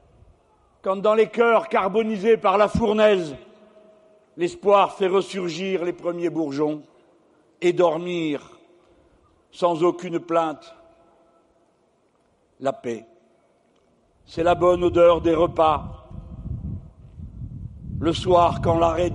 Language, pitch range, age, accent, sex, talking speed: French, 150-215 Hz, 60-79, French, male, 95 wpm